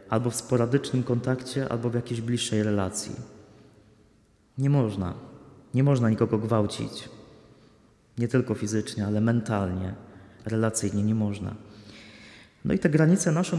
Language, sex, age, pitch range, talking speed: Polish, male, 30-49, 110-130 Hz, 125 wpm